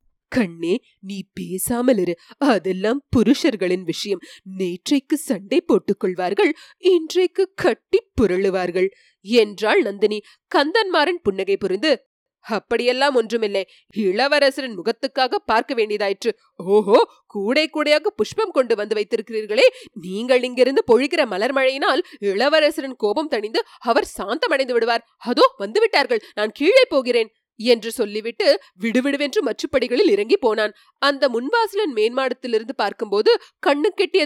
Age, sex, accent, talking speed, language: 30-49, female, native, 100 wpm, Tamil